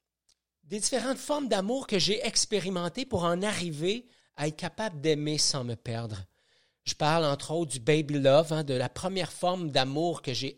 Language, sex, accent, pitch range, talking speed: French, male, Canadian, 145-225 Hz, 180 wpm